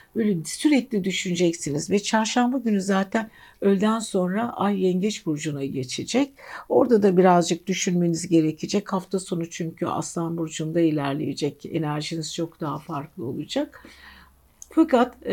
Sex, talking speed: female, 115 wpm